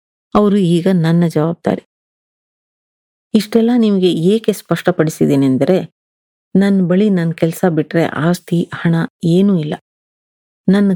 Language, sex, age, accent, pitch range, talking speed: Kannada, female, 30-49, native, 165-200 Hz, 100 wpm